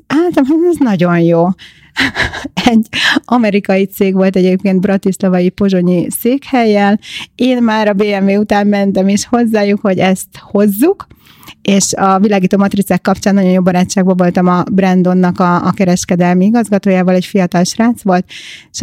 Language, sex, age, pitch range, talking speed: Hungarian, female, 30-49, 185-225 Hz, 135 wpm